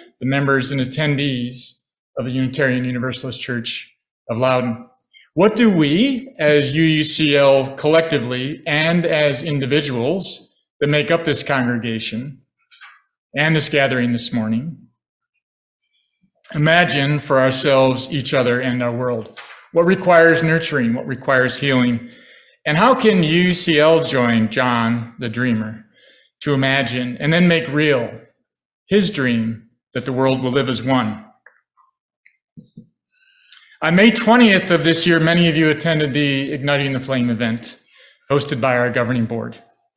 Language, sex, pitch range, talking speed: English, male, 130-165 Hz, 130 wpm